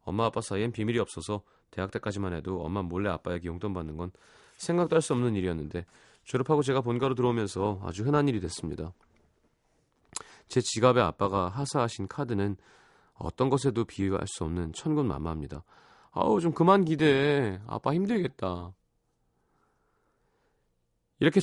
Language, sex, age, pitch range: Korean, male, 30-49, 90-135 Hz